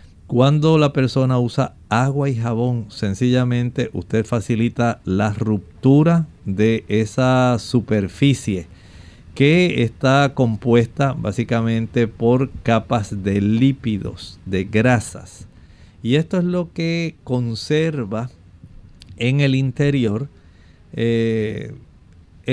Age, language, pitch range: 50-69, Spanish, 105-130 Hz